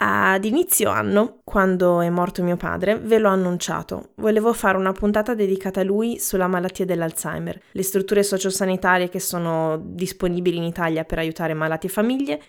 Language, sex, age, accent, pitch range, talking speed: Italian, female, 20-39, native, 180-225 Hz, 165 wpm